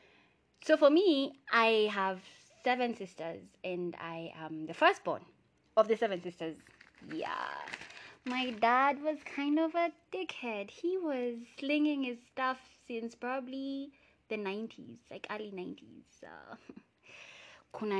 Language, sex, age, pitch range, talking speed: English, female, 20-39, 195-270 Hz, 125 wpm